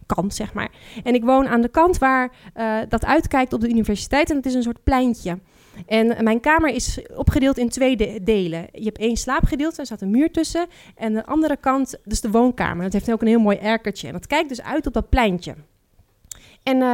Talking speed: 225 wpm